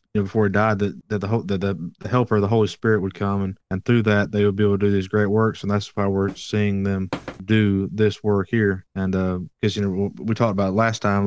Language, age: English, 20-39